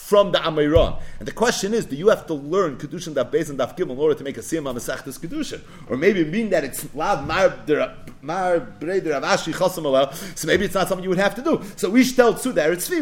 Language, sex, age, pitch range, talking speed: English, male, 40-59, 170-245 Hz, 205 wpm